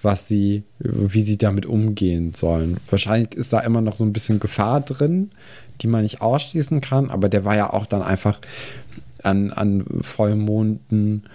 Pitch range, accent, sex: 100-120 Hz, German, male